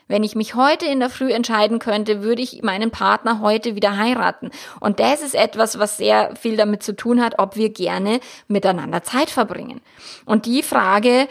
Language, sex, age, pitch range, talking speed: German, female, 20-39, 215-265 Hz, 190 wpm